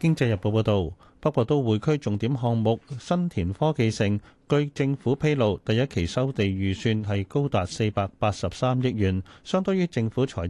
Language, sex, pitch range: Chinese, male, 105-145 Hz